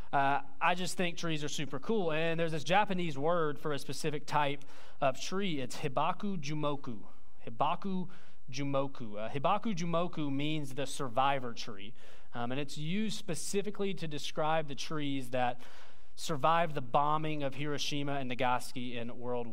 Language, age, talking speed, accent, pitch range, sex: English, 30-49, 155 wpm, American, 130-165 Hz, male